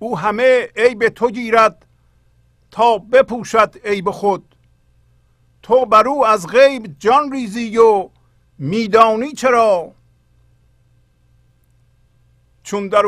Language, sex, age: Persian, male, 50-69